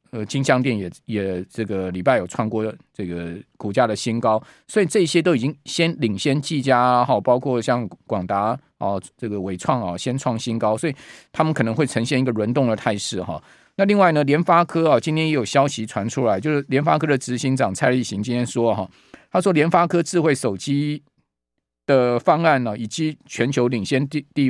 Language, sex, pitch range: Chinese, male, 115-150 Hz